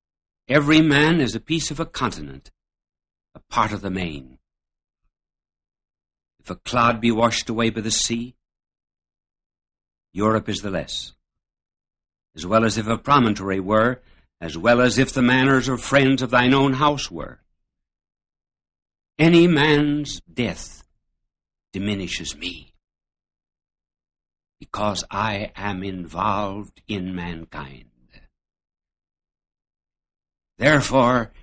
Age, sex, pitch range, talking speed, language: 60-79, male, 85-125 Hz, 110 wpm, English